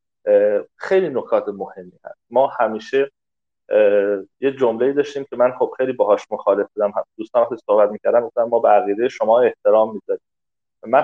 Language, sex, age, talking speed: Persian, male, 30-49, 145 wpm